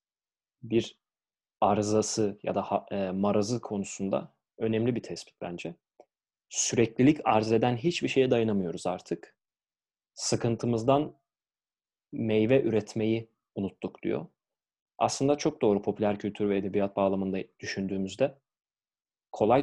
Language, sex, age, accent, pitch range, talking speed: Turkish, male, 30-49, native, 100-115 Hz, 95 wpm